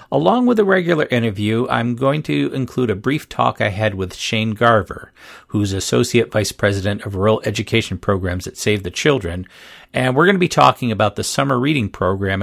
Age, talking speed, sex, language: 50-69, 195 wpm, male, English